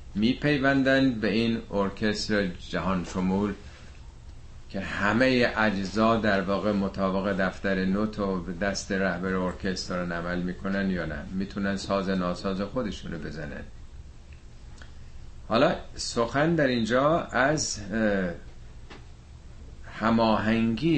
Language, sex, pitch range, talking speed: Persian, male, 70-115 Hz, 105 wpm